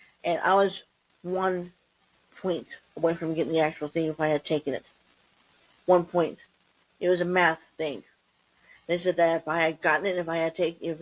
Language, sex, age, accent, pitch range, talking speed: English, female, 50-69, American, 165-190 Hz, 195 wpm